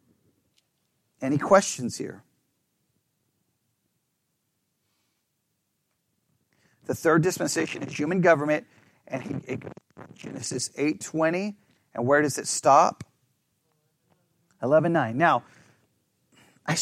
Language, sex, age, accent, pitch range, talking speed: English, male, 40-59, American, 150-210 Hz, 70 wpm